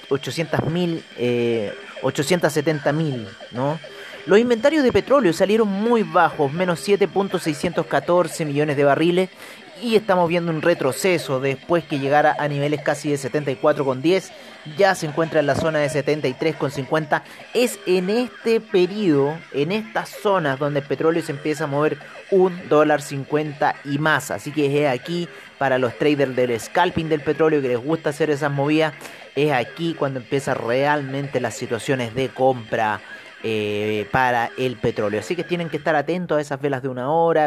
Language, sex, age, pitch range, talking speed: Spanish, male, 30-49, 130-165 Hz, 160 wpm